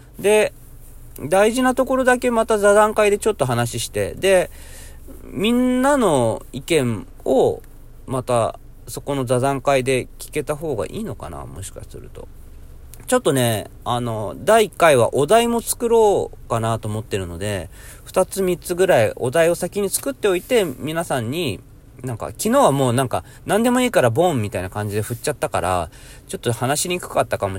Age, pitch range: 40-59, 110-180 Hz